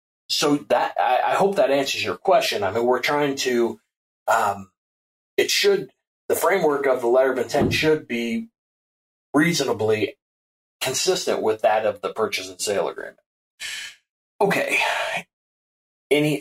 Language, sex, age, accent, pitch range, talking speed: English, male, 30-49, American, 115-145 Hz, 135 wpm